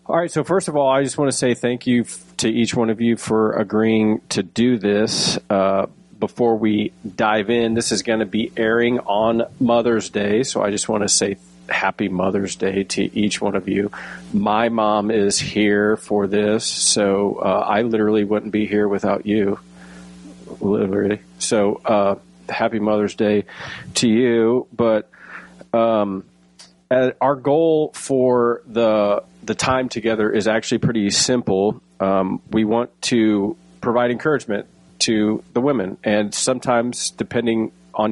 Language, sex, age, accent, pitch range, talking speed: English, male, 40-59, American, 100-120 Hz, 160 wpm